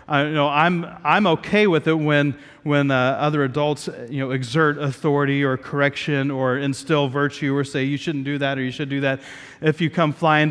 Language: English